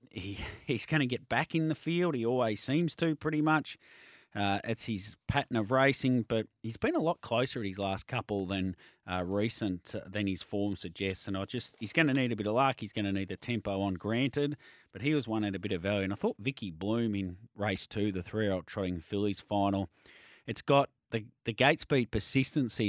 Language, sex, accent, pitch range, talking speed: English, male, Australian, 100-130 Hz, 230 wpm